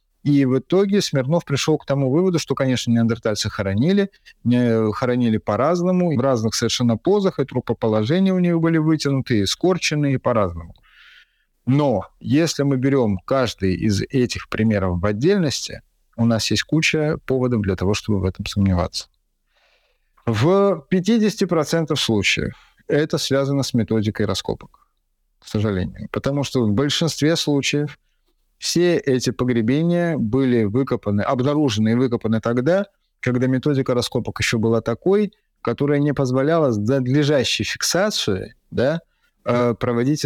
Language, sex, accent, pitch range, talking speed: Russian, male, native, 115-155 Hz, 130 wpm